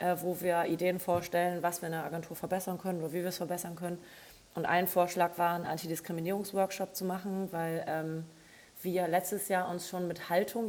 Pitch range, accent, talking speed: 160-180 Hz, German, 195 wpm